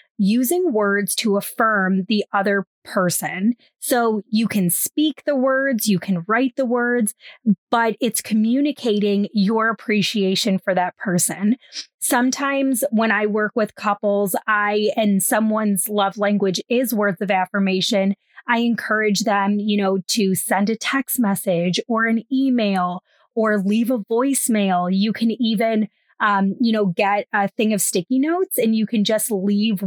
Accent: American